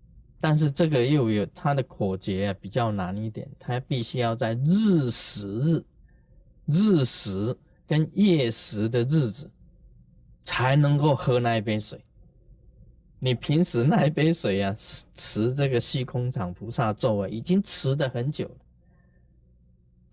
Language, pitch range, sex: Chinese, 105-155 Hz, male